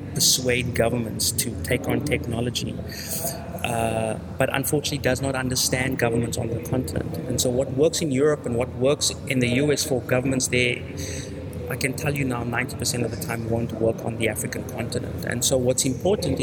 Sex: male